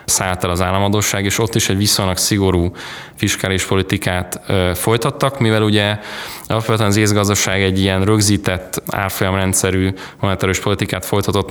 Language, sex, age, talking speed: Hungarian, male, 20-39, 125 wpm